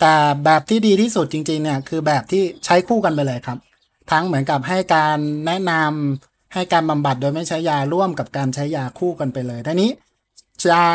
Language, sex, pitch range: Thai, male, 140-175 Hz